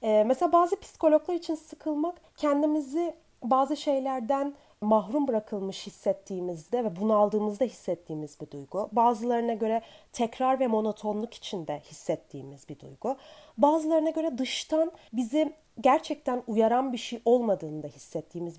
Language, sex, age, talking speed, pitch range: Turkish, female, 30-49, 115 wpm, 205-310 Hz